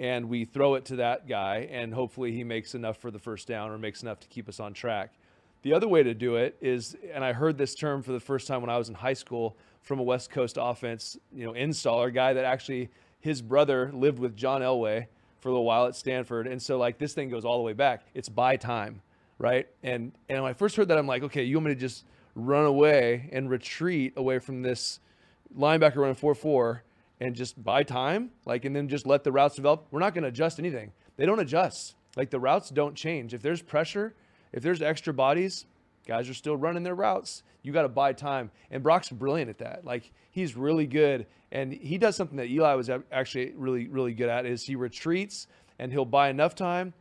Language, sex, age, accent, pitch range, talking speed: English, male, 30-49, American, 120-150 Hz, 230 wpm